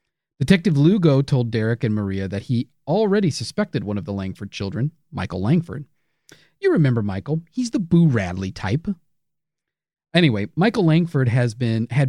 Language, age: English, 40-59